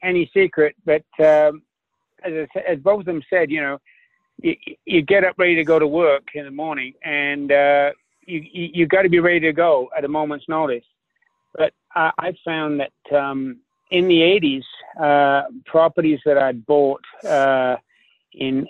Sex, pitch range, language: male, 135-160 Hz, English